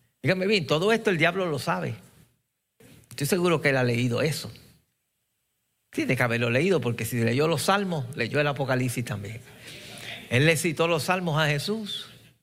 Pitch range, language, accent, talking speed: 125-175 Hz, Spanish, American, 175 wpm